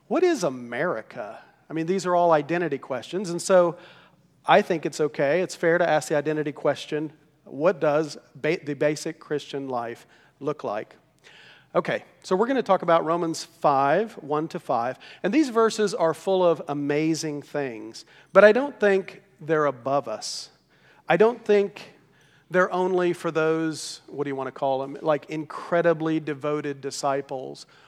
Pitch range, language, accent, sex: 145-175 Hz, English, American, male